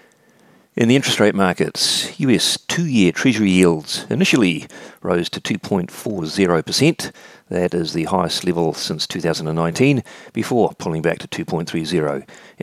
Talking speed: 120 wpm